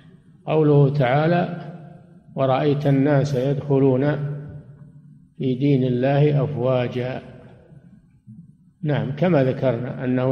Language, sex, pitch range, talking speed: Arabic, male, 130-160 Hz, 75 wpm